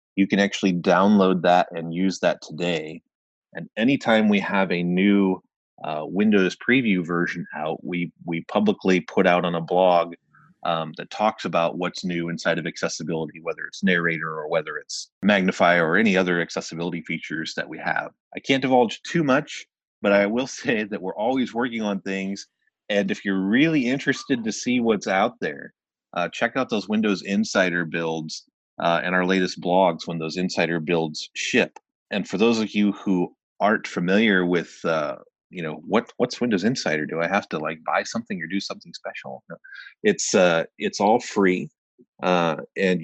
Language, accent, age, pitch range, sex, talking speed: English, American, 30-49, 85-100 Hz, male, 180 wpm